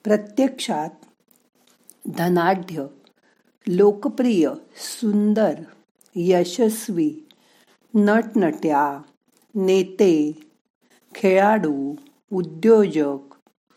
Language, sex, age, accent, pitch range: Marathi, female, 50-69, native, 180-235 Hz